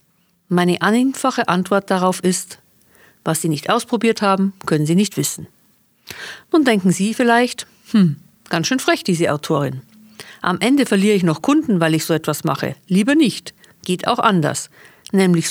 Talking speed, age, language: 160 wpm, 50-69, German